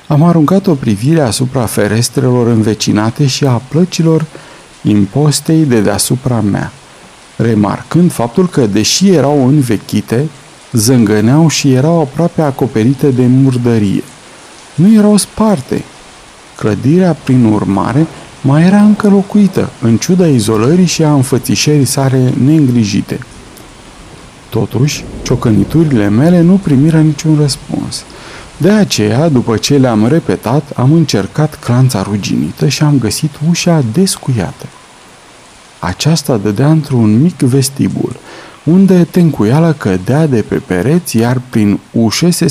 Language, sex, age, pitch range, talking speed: Romanian, male, 50-69, 115-160 Hz, 115 wpm